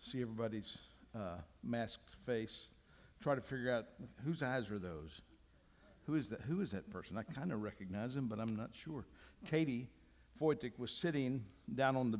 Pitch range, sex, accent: 115-155 Hz, male, American